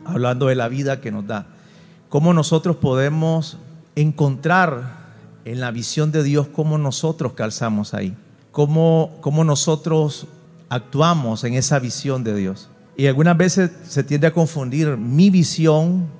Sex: male